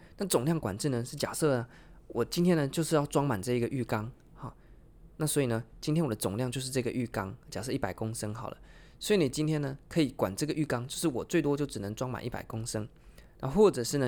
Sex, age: male, 20-39